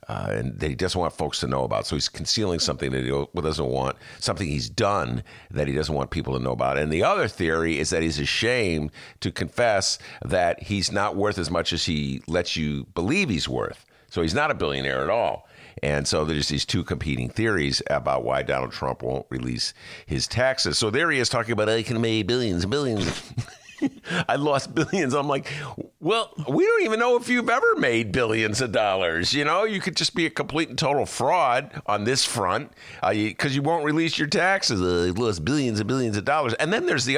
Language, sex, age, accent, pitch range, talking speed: English, male, 50-69, American, 85-140 Hz, 220 wpm